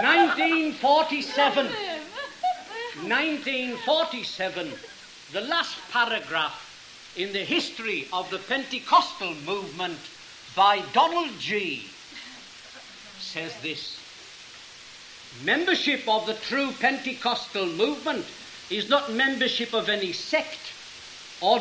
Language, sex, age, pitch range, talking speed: English, male, 60-79, 240-330 Hz, 85 wpm